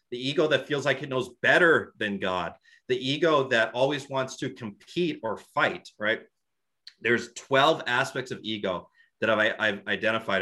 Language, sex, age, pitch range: English, male, 30-49, 100-130 Hz